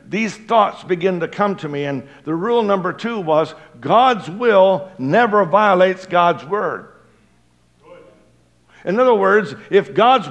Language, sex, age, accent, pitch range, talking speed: English, male, 60-79, American, 140-210 Hz, 140 wpm